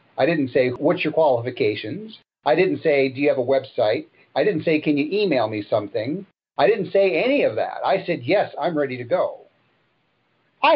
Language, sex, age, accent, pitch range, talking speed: English, male, 50-69, American, 125-180 Hz, 200 wpm